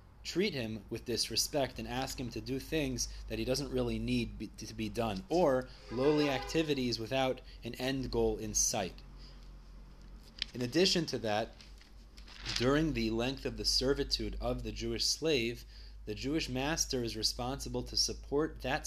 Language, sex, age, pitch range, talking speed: English, male, 30-49, 95-130 Hz, 155 wpm